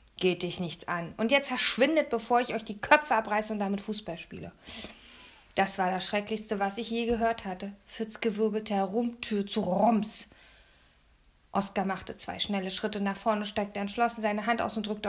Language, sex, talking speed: German, female, 175 wpm